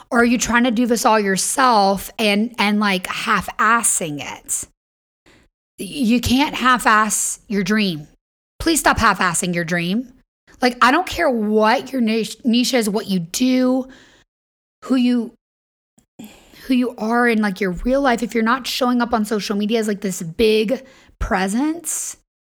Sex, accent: female, American